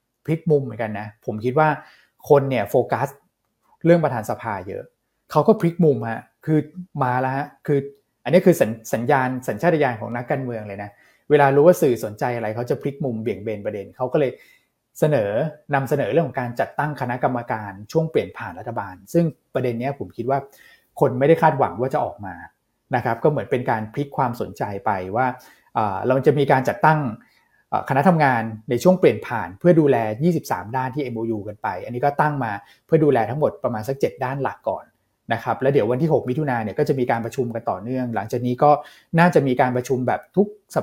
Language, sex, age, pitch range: Thai, male, 20-39, 115-150 Hz